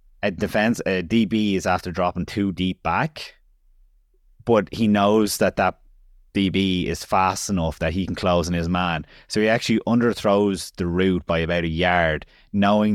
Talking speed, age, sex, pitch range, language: 165 wpm, 20-39, male, 90-105 Hz, English